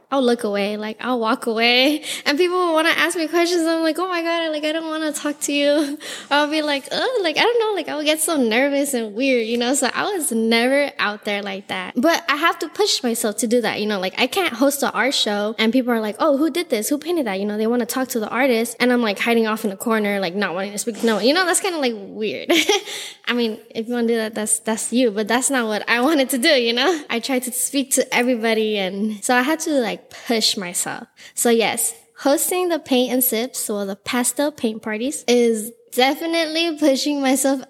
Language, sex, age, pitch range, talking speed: English, female, 10-29, 225-290 Hz, 265 wpm